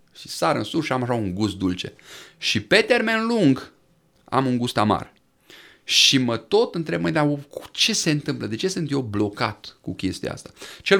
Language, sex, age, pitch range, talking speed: Romanian, male, 30-49, 105-155 Hz, 195 wpm